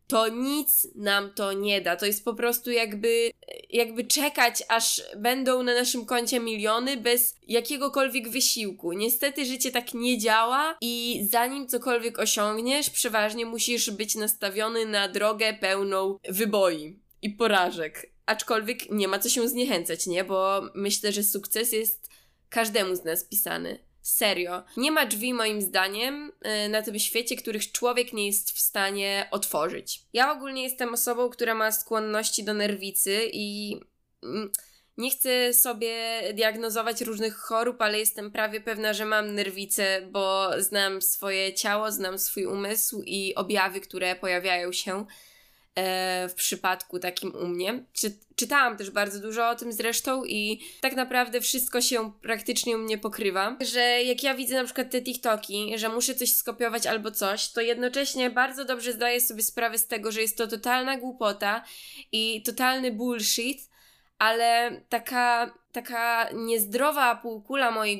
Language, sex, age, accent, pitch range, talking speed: Polish, female, 20-39, native, 205-245 Hz, 145 wpm